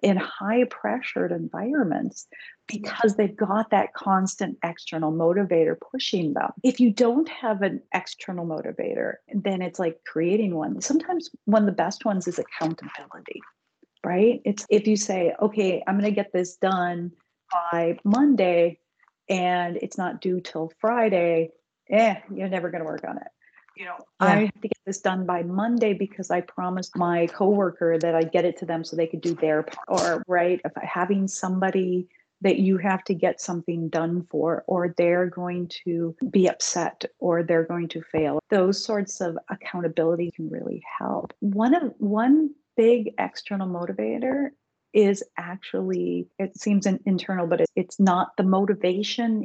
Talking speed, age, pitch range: 165 wpm, 40-59, 170-210 Hz